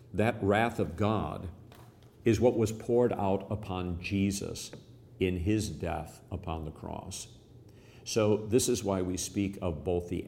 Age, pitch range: 50-69, 90-115 Hz